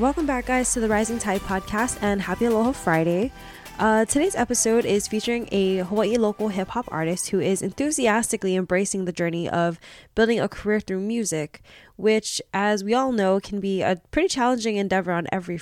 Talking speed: 180 wpm